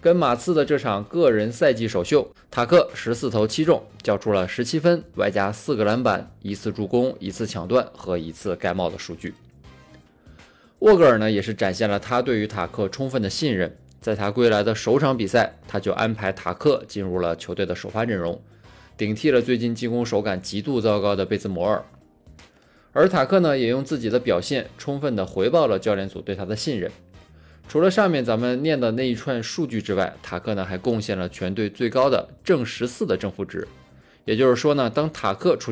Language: Chinese